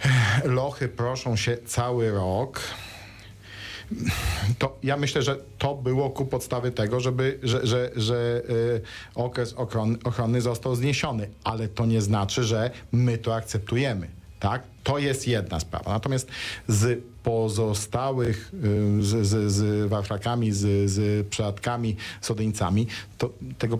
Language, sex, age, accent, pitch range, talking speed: Polish, male, 50-69, native, 100-120 Hz, 125 wpm